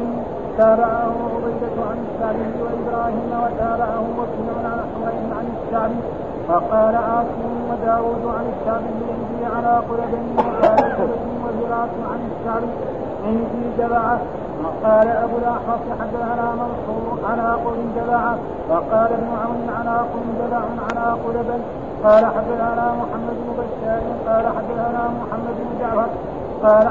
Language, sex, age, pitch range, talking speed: Arabic, male, 50-69, 230-235 Hz, 95 wpm